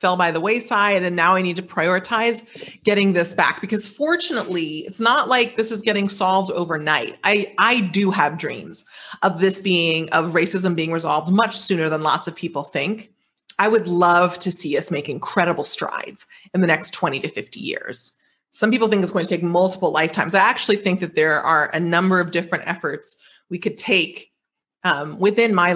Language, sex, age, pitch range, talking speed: English, female, 30-49, 170-210 Hz, 195 wpm